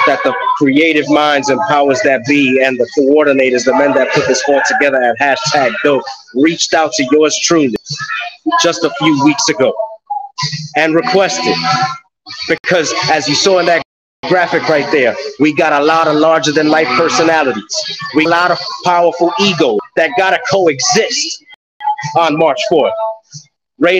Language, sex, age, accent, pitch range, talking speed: English, male, 30-49, American, 155-195 Hz, 165 wpm